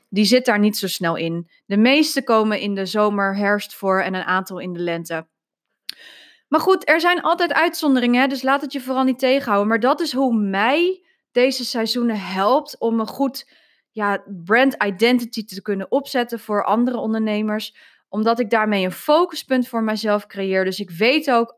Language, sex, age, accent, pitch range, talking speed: Dutch, female, 20-39, Dutch, 200-260 Hz, 180 wpm